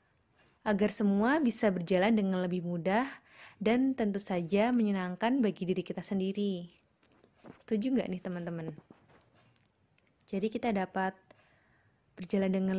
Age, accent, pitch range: 20-39, native, 185-235 Hz